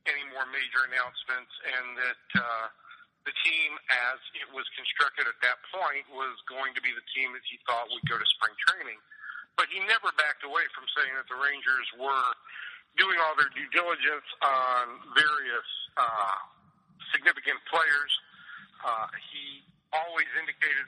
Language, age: Korean, 50-69